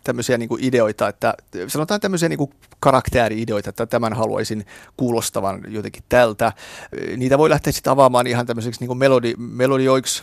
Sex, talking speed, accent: male, 135 wpm, native